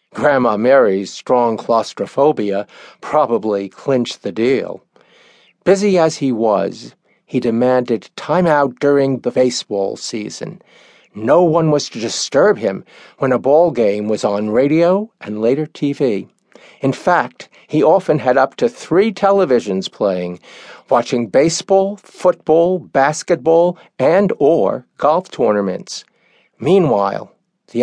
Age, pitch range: 50-69, 110-175 Hz